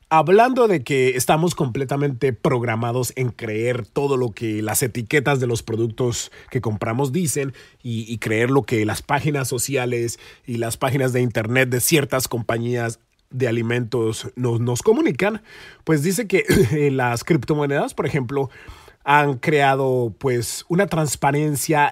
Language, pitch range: Spanish, 115-145 Hz